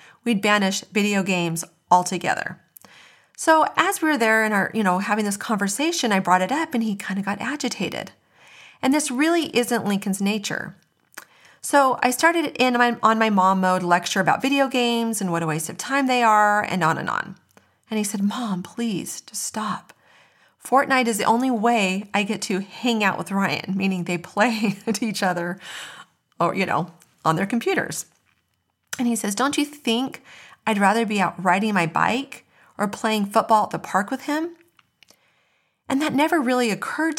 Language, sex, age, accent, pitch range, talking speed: English, female, 40-59, American, 190-250 Hz, 185 wpm